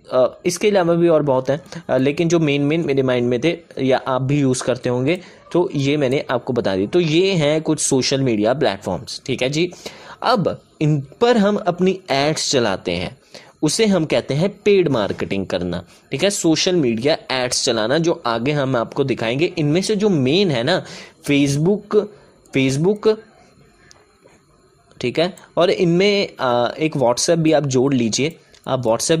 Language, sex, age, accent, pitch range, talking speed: Hindi, male, 20-39, native, 130-170 Hz, 170 wpm